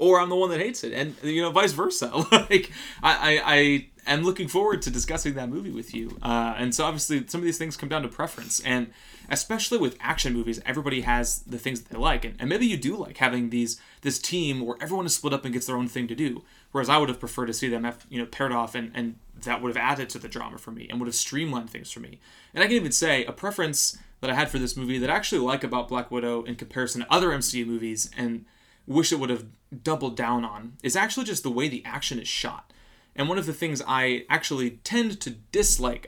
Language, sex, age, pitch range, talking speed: English, male, 30-49, 120-150 Hz, 260 wpm